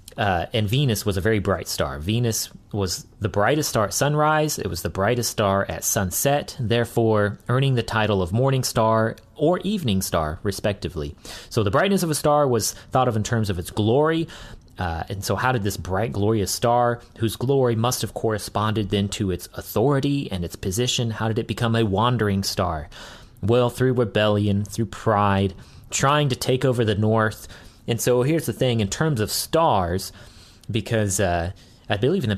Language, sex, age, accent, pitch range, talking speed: English, male, 30-49, American, 95-120 Hz, 185 wpm